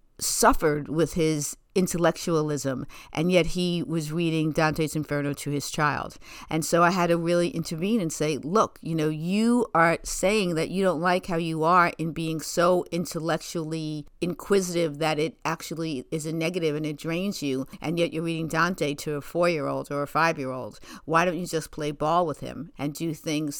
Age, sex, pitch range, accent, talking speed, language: 50-69, female, 155-175 Hz, American, 185 wpm, English